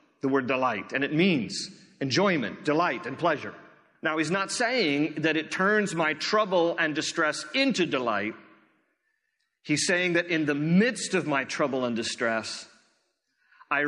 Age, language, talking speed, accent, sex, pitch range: 40-59, English, 150 wpm, American, male, 115-165 Hz